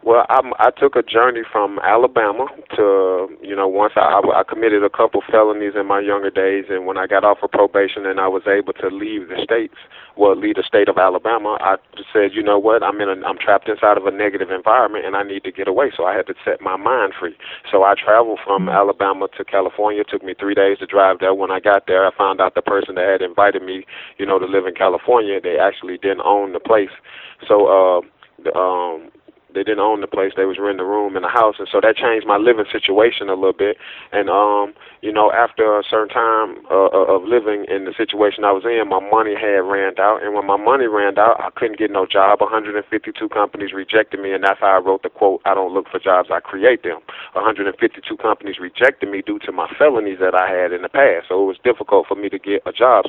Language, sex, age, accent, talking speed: English, male, 30-49, American, 240 wpm